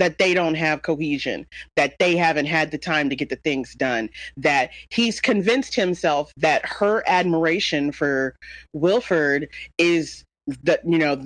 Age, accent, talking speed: 30-49, American, 155 wpm